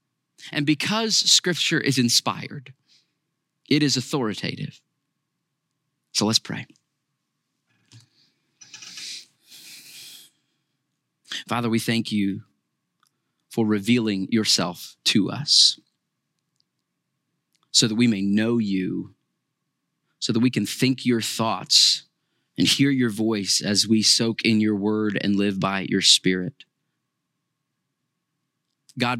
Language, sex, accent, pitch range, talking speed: English, male, American, 105-140 Hz, 100 wpm